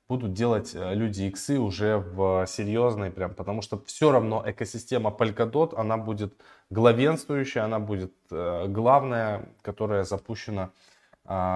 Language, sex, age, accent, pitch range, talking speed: Russian, male, 20-39, native, 95-115 Hz, 125 wpm